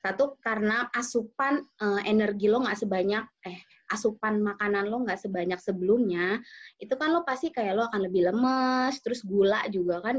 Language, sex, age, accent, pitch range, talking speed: Indonesian, female, 20-39, native, 185-240 Hz, 165 wpm